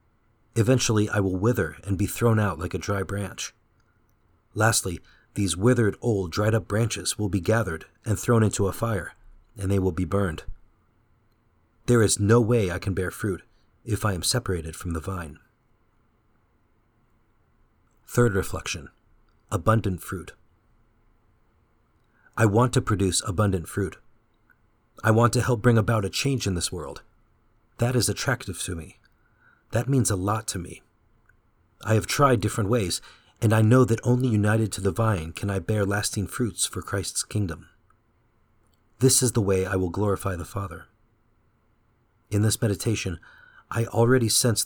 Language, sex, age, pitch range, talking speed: English, male, 40-59, 95-115 Hz, 155 wpm